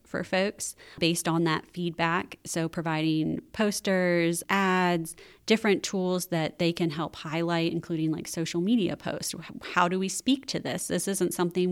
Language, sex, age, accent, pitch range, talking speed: English, female, 30-49, American, 165-185 Hz, 160 wpm